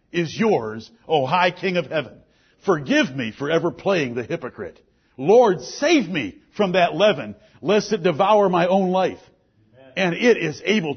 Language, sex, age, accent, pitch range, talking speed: English, male, 60-79, American, 105-175 Hz, 165 wpm